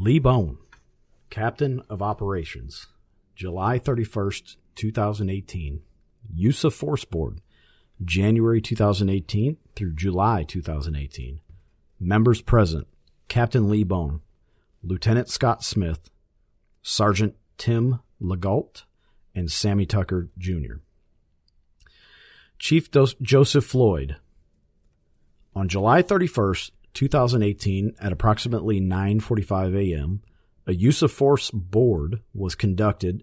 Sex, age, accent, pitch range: male, 40-59, American, 90-115 Hz